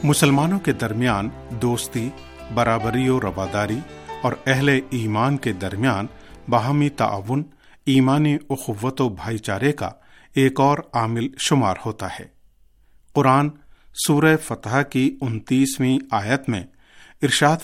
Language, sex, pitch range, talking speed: Urdu, male, 110-140 Hz, 120 wpm